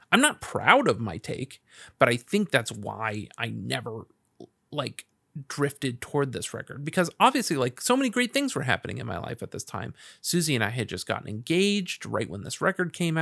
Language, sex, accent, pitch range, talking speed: English, male, American, 115-140 Hz, 205 wpm